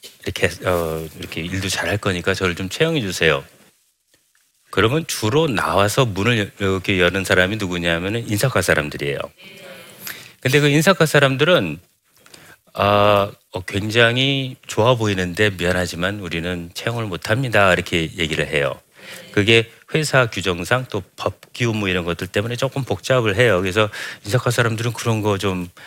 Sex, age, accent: male, 40-59, native